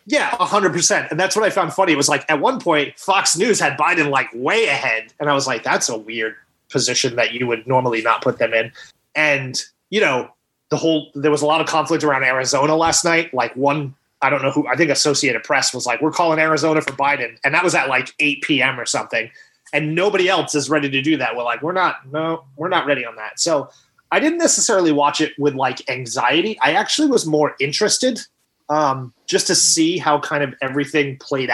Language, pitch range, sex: English, 135-160 Hz, male